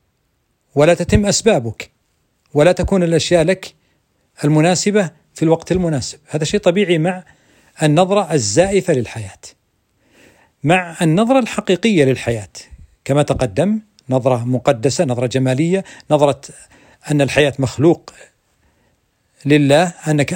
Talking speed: 100 wpm